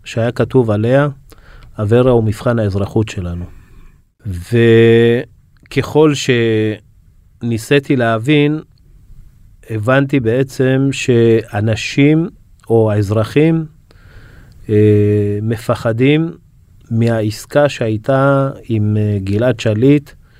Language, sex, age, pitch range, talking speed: Hebrew, male, 30-49, 110-135 Hz, 70 wpm